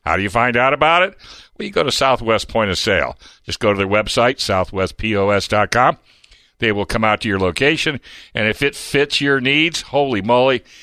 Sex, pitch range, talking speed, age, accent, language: male, 105-135 Hz, 200 wpm, 60-79, American, English